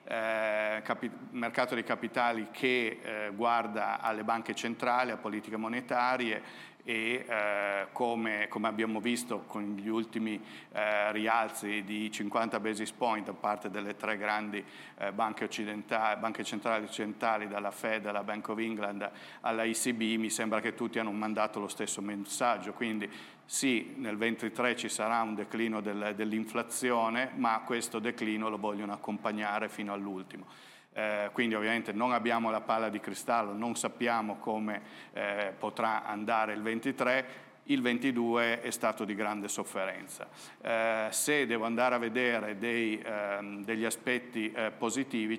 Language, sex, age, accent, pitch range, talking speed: Italian, male, 50-69, native, 105-115 Hz, 145 wpm